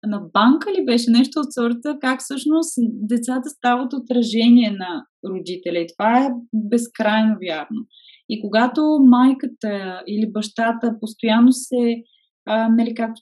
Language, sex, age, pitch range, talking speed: Bulgarian, female, 20-39, 210-255 Hz, 120 wpm